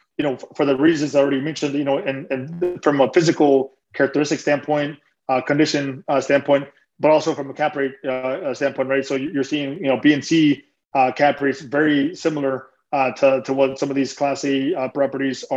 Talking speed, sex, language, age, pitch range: 210 wpm, male, English, 20-39, 135-150 Hz